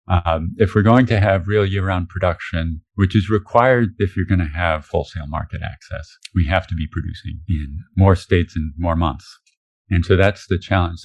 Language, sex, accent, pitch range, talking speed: English, male, American, 85-100 Hz, 195 wpm